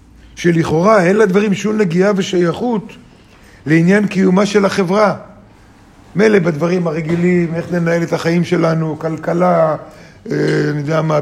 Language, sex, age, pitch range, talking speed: Hebrew, male, 50-69, 125-200 Hz, 120 wpm